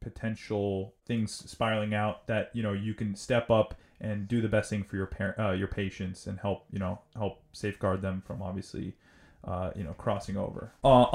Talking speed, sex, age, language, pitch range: 200 wpm, male, 20-39, English, 105-130 Hz